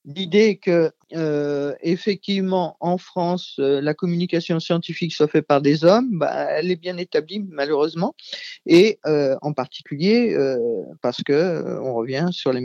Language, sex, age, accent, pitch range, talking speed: French, male, 50-69, French, 145-195 Hz, 155 wpm